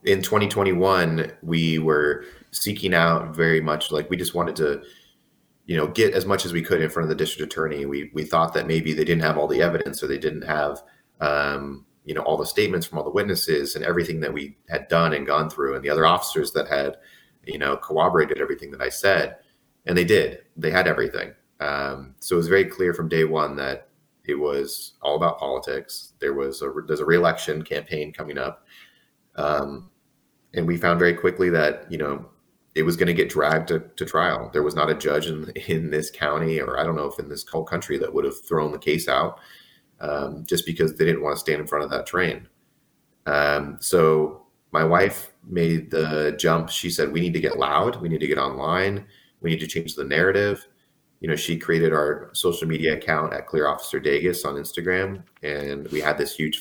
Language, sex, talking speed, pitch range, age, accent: English, male, 215 wpm, 75-95 Hz, 30-49, American